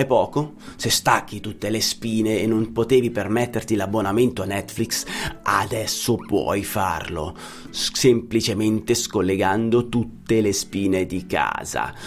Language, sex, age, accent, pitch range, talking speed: Italian, male, 30-49, native, 110-135 Hz, 115 wpm